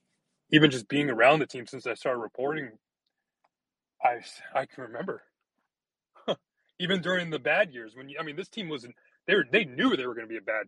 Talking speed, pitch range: 210 wpm, 150-190 Hz